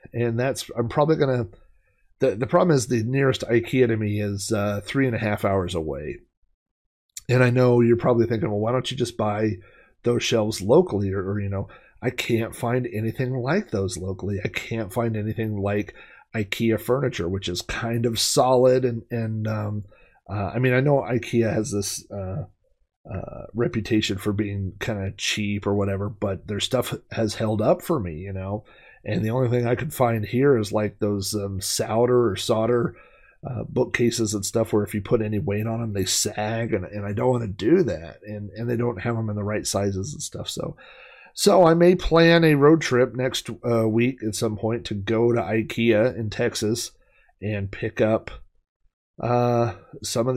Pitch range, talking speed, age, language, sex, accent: 100-120 Hz, 195 wpm, 30-49, English, male, American